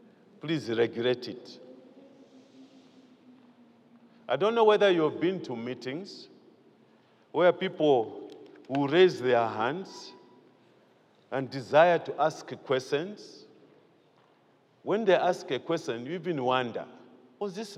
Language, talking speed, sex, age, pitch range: English, 110 wpm, male, 50-69, 145-230 Hz